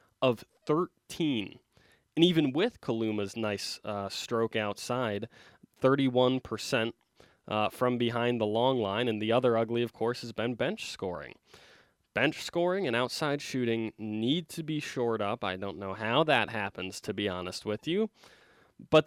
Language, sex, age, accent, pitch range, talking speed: English, male, 20-39, American, 110-135 Hz, 155 wpm